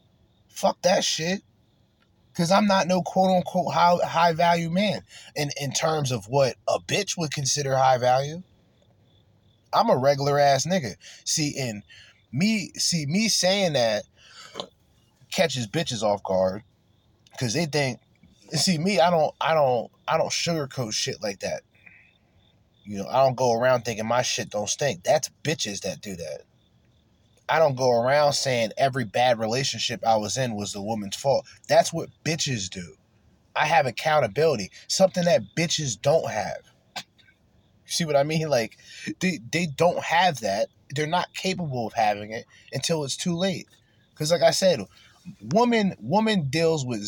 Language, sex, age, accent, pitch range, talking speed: English, male, 20-39, American, 110-165 Hz, 160 wpm